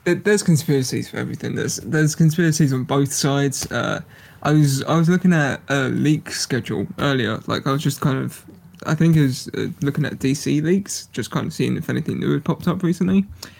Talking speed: 205 wpm